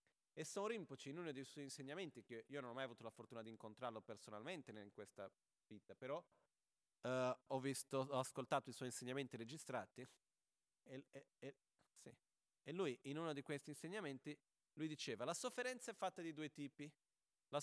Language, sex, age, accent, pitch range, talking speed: Italian, male, 30-49, native, 125-165 Hz, 175 wpm